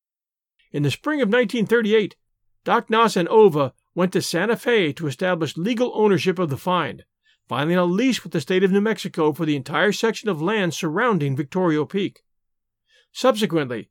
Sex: male